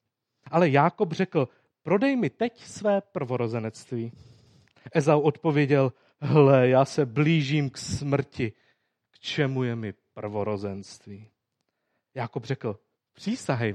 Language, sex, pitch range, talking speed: Czech, male, 120-155 Hz, 105 wpm